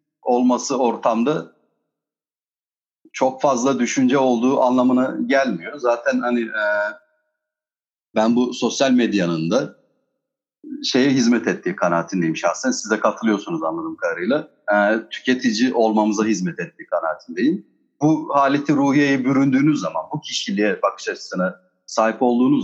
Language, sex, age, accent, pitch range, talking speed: Turkish, male, 40-59, native, 115-165 Hz, 115 wpm